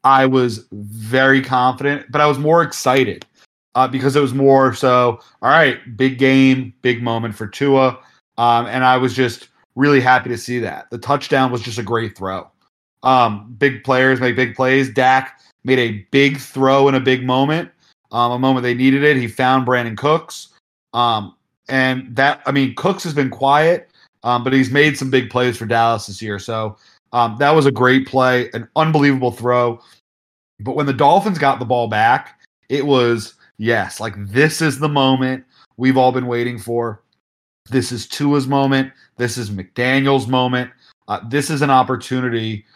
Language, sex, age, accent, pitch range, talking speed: English, male, 30-49, American, 120-135 Hz, 180 wpm